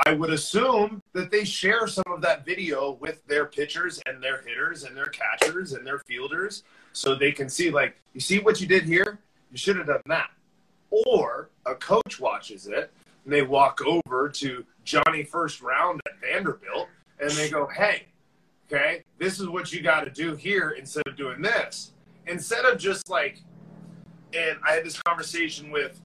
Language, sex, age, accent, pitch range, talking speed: English, male, 30-49, American, 150-195 Hz, 185 wpm